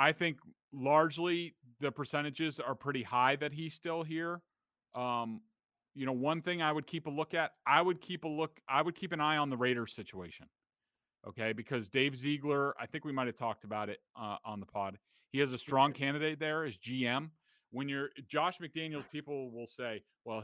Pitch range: 125-155 Hz